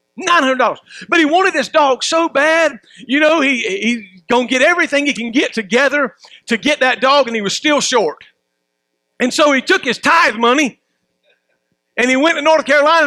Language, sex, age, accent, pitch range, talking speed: English, male, 50-69, American, 230-300 Hz, 195 wpm